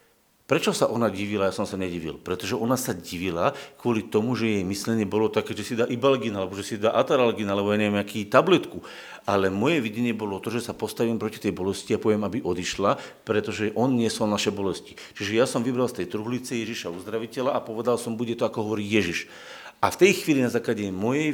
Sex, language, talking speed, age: male, Slovak, 215 wpm, 50-69